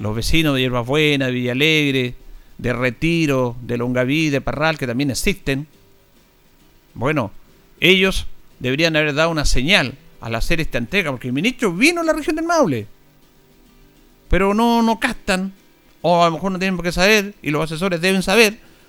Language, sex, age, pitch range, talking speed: Spanish, male, 50-69, 125-190 Hz, 175 wpm